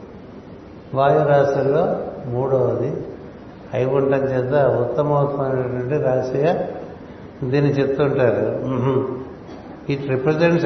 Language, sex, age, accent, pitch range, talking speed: Telugu, male, 60-79, native, 135-155 Hz, 75 wpm